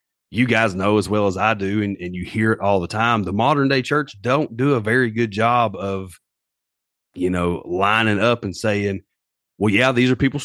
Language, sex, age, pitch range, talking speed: English, male, 30-49, 100-120 Hz, 215 wpm